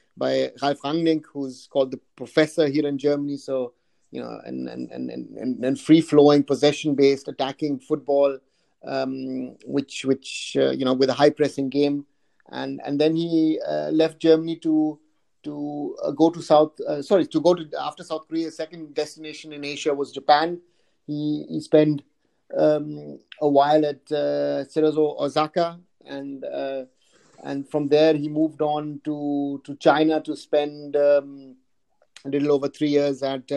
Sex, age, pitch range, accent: male, 30-49, 135-150 Hz, Indian